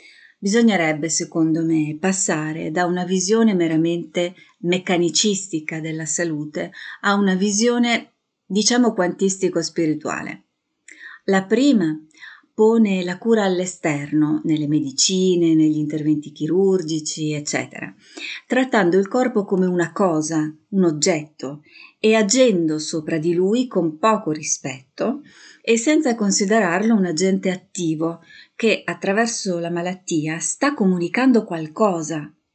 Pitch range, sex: 160-215 Hz, female